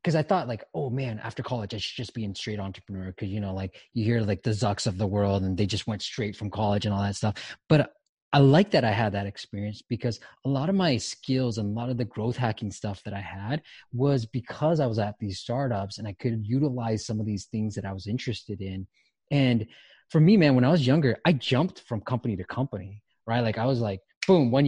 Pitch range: 105-130 Hz